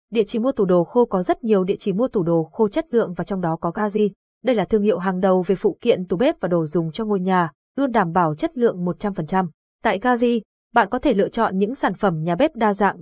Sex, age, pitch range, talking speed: female, 20-39, 185-235 Hz, 270 wpm